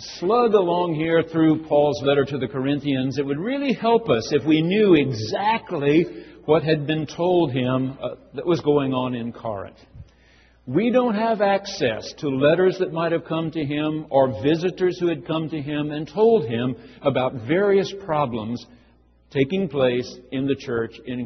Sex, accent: male, American